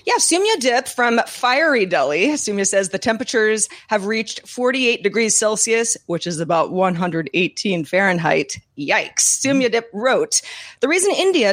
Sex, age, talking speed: female, 30-49, 140 wpm